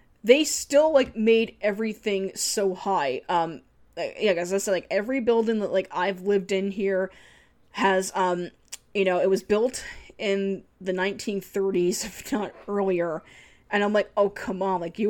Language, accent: English, American